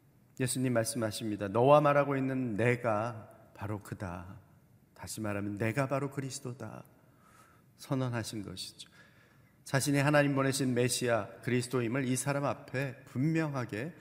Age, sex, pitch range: 40-59, male, 110-140 Hz